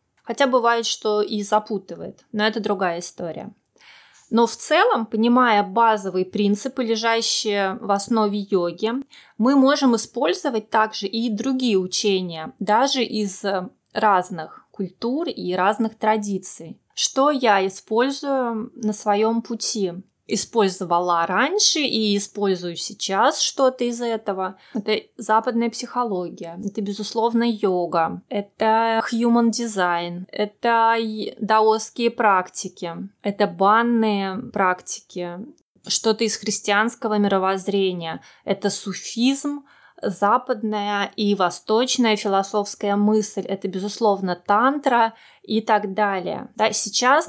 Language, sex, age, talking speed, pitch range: Russian, female, 20-39, 105 wpm, 200-235 Hz